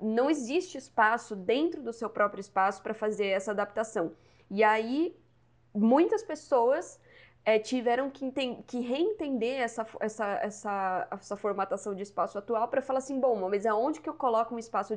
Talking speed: 165 wpm